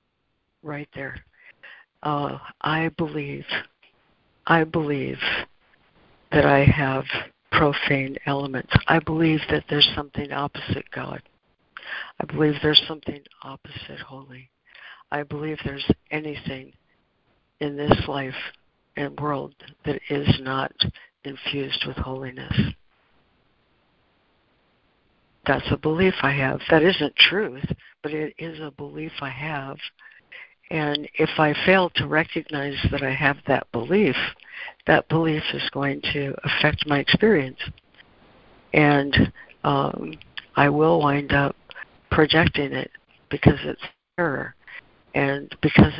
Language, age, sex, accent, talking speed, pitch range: English, 60-79, female, American, 115 wpm, 140-155 Hz